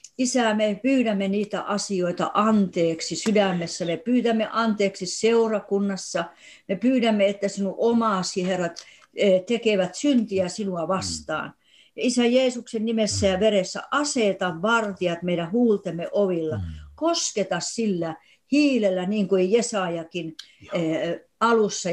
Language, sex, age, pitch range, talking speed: Finnish, female, 60-79, 185-235 Hz, 105 wpm